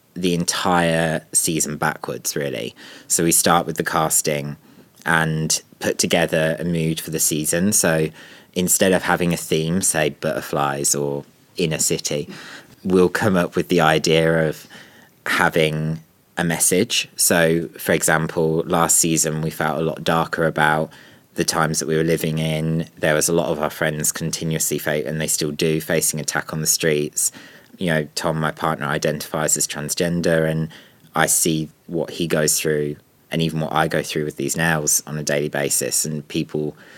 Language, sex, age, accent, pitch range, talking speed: English, male, 20-39, British, 75-85 Hz, 170 wpm